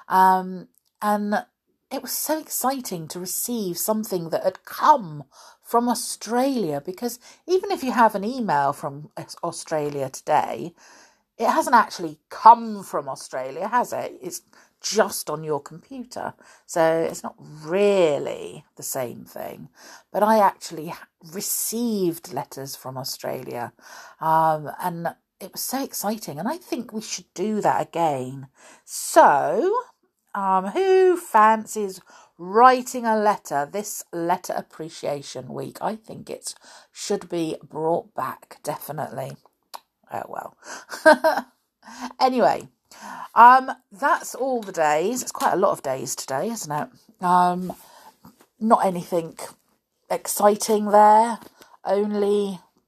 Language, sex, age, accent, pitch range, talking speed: English, female, 50-69, British, 170-245 Hz, 120 wpm